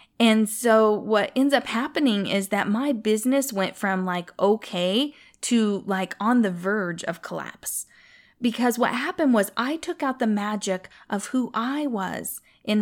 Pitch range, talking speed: 205-270 Hz, 165 wpm